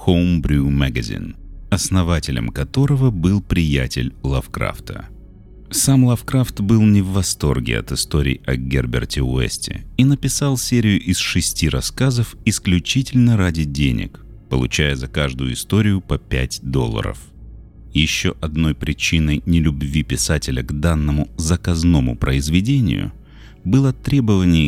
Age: 30-49